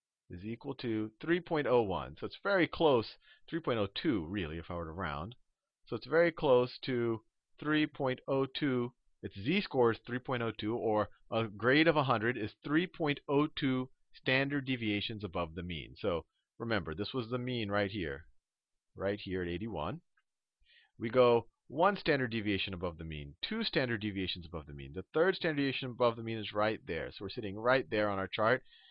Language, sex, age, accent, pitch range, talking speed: English, male, 40-59, American, 100-130 Hz, 170 wpm